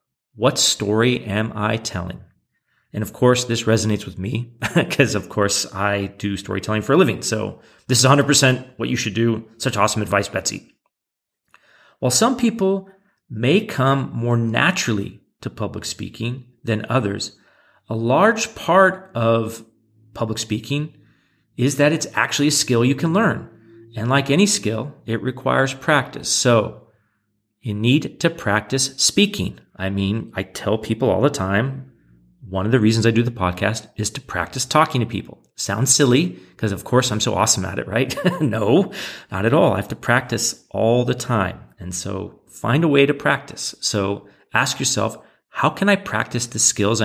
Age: 40-59